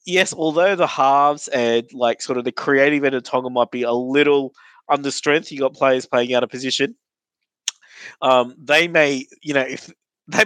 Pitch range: 125-145 Hz